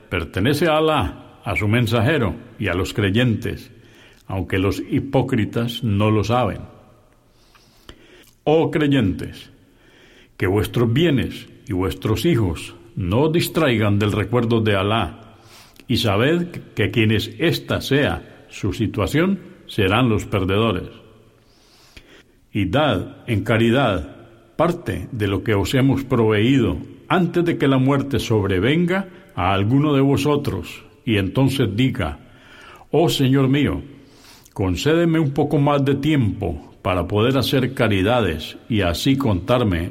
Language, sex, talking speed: Spanish, male, 120 wpm